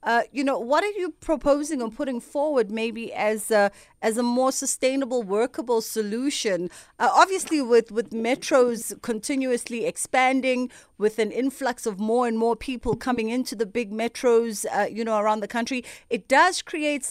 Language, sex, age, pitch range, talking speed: English, female, 30-49, 215-260 Hz, 165 wpm